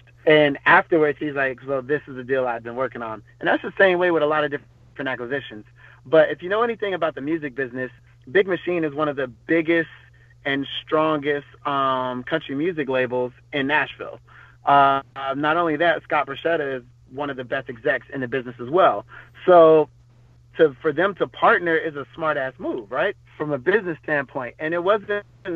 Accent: American